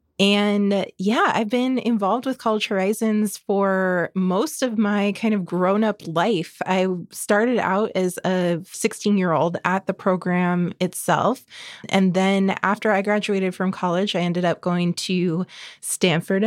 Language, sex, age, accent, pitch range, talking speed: English, female, 20-39, American, 175-200 Hz, 140 wpm